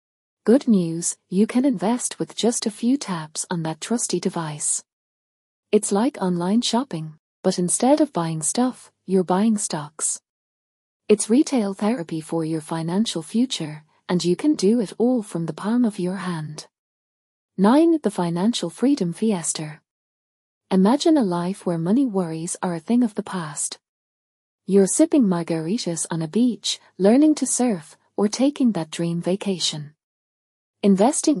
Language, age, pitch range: English, 30-49, 165-225 Hz